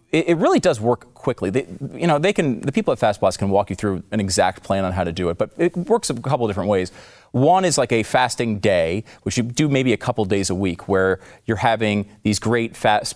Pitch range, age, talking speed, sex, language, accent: 105-140 Hz, 30-49, 255 wpm, male, English, American